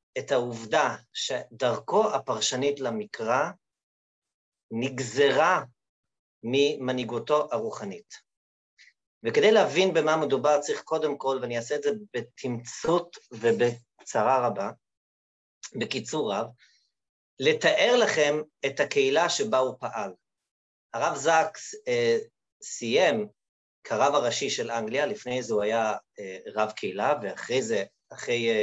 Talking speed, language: 100 wpm, Hebrew